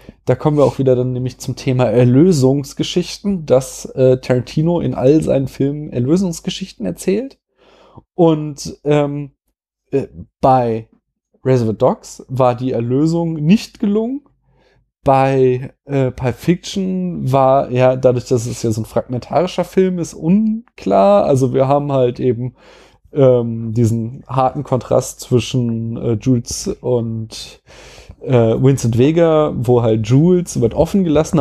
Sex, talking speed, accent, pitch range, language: male, 130 wpm, German, 115-150 Hz, German